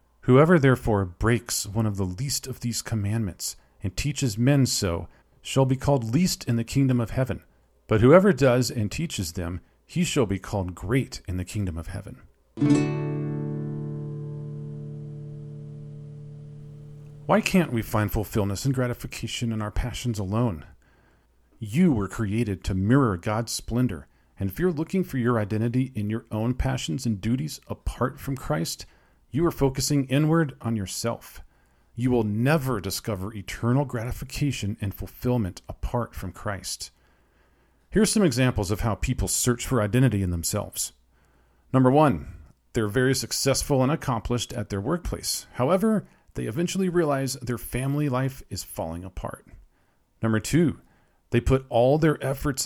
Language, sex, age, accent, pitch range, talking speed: English, male, 40-59, American, 95-135 Hz, 145 wpm